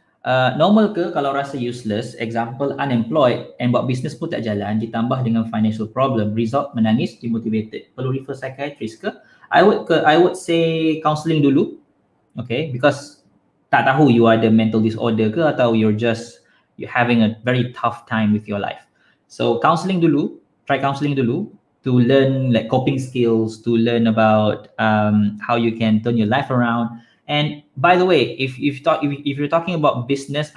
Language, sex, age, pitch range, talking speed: Malay, male, 20-39, 115-145 Hz, 175 wpm